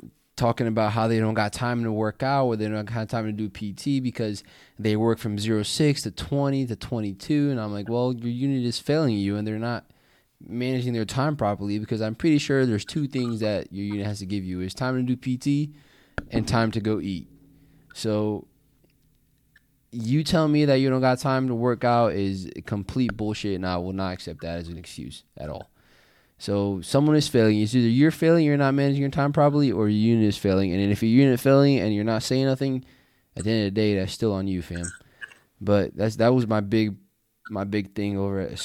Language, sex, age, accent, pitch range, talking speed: English, male, 20-39, American, 100-135 Hz, 225 wpm